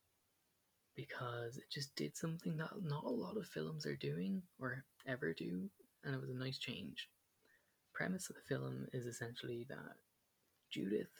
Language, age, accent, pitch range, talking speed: English, 20-39, Irish, 100-135 Hz, 160 wpm